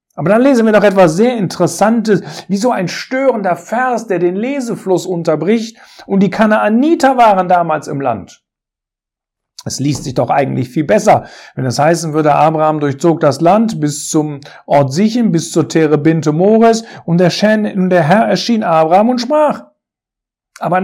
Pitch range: 160-220 Hz